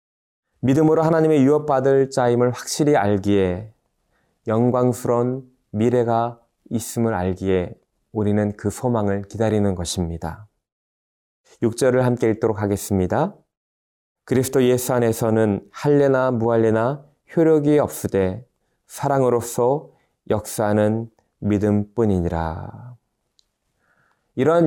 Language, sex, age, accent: Korean, male, 20-39, native